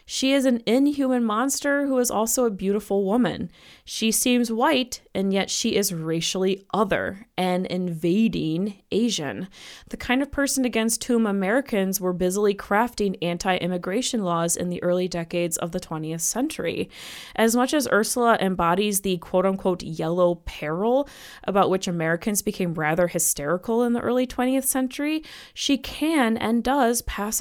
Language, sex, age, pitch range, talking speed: English, female, 20-39, 185-250 Hz, 150 wpm